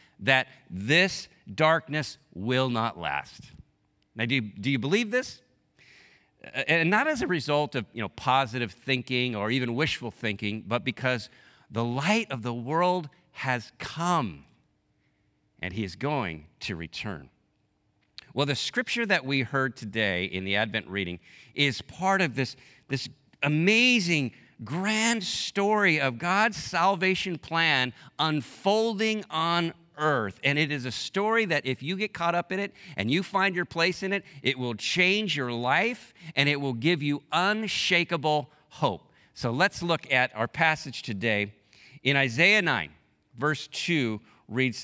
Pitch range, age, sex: 120-175 Hz, 50-69, male